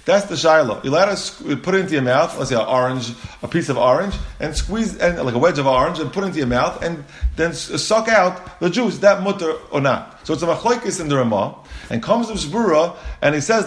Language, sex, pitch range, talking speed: English, male, 130-185 Hz, 250 wpm